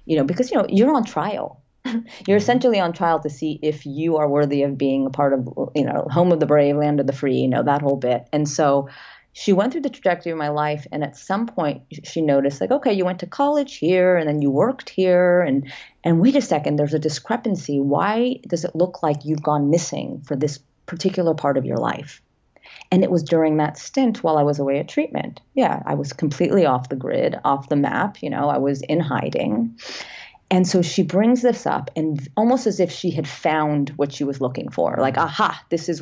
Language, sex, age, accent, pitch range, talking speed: English, female, 30-49, American, 145-180 Hz, 230 wpm